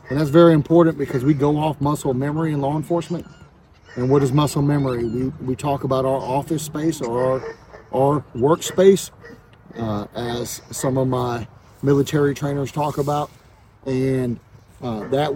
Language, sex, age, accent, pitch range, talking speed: English, male, 40-59, American, 120-150 Hz, 160 wpm